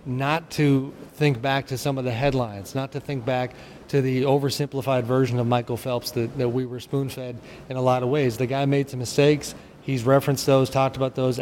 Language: English